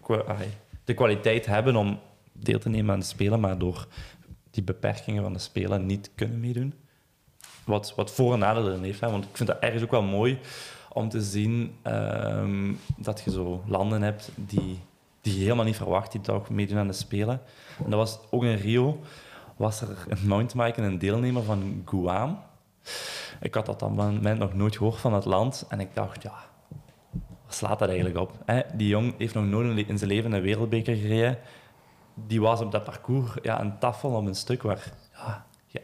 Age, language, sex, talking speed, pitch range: 20-39, Dutch, male, 195 wpm, 100-120 Hz